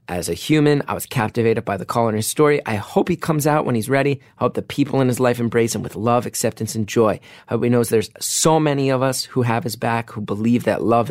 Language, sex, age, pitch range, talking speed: English, male, 30-49, 105-130 Hz, 275 wpm